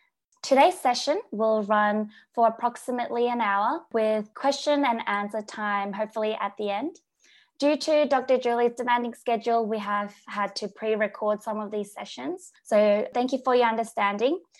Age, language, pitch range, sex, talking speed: 10-29, English, 210-255 Hz, female, 155 wpm